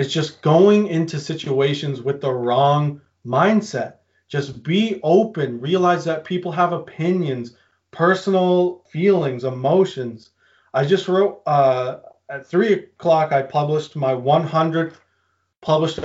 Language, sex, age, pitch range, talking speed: English, male, 30-49, 135-175 Hz, 120 wpm